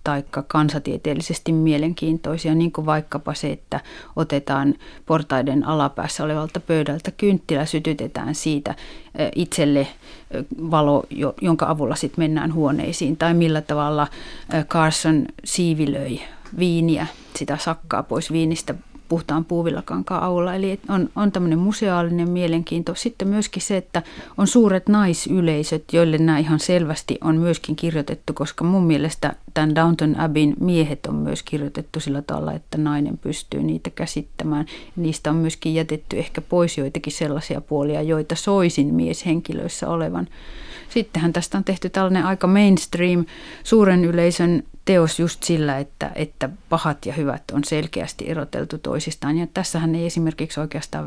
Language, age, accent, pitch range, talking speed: Finnish, 30-49, native, 150-170 Hz, 130 wpm